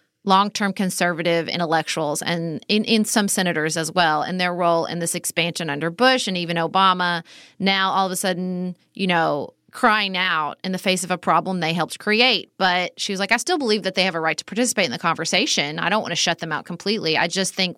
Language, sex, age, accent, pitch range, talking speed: English, female, 30-49, American, 170-210 Hz, 225 wpm